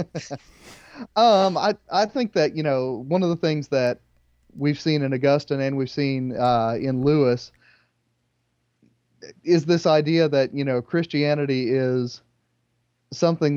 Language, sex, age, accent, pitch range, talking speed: English, male, 30-49, American, 125-150 Hz, 135 wpm